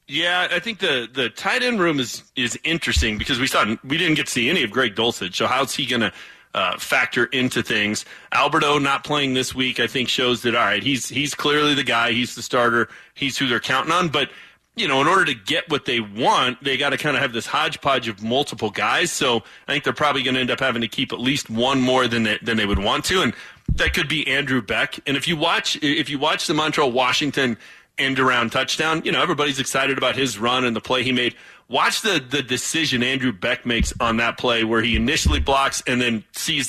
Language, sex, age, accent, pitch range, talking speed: English, male, 30-49, American, 120-145 Hz, 235 wpm